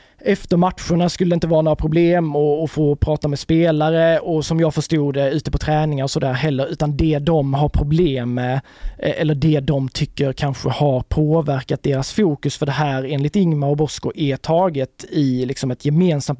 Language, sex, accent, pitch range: Swedish, male, native, 140-165 Hz